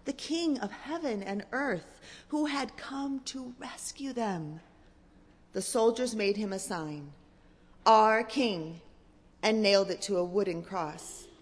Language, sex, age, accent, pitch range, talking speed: English, female, 30-49, American, 165-240 Hz, 140 wpm